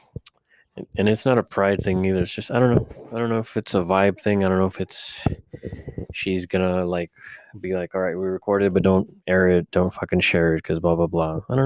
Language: English